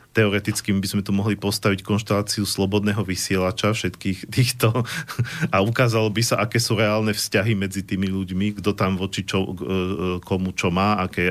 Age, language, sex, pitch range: 40-59, Slovak, male, 95-105 Hz